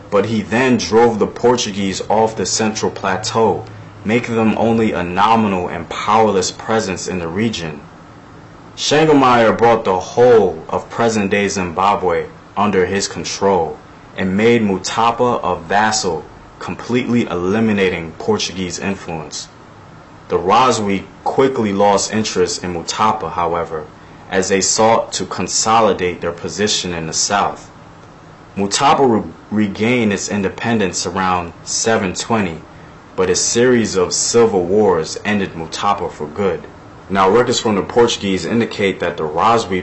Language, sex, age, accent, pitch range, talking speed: English, male, 30-49, American, 90-115 Hz, 130 wpm